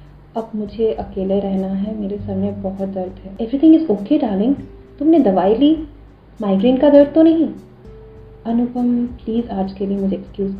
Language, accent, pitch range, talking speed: Hindi, native, 195-275 Hz, 165 wpm